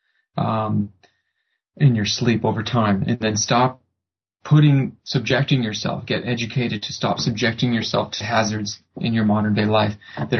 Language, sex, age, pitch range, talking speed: English, male, 30-49, 110-145 Hz, 150 wpm